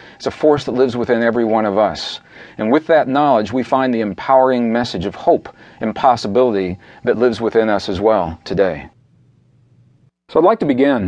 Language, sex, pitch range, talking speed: English, male, 105-130 Hz, 190 wpm